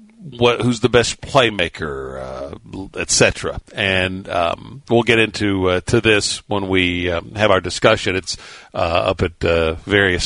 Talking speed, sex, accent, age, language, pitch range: 160 wpm, male, American, 50-69, English, 90-120 Hz